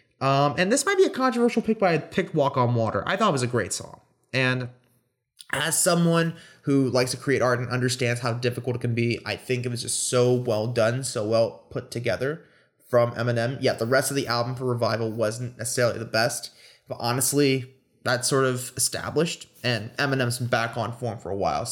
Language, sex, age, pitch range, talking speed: English, male, 20-39, 120-150 Hz, 215 wpm